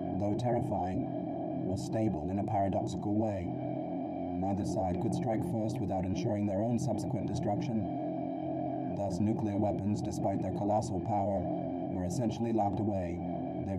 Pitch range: 95-110 Hz